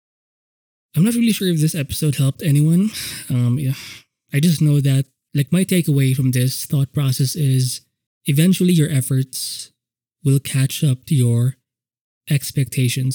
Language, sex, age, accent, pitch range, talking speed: English, male, 20-39, Filipino, 130-155 Hz, 145 wpm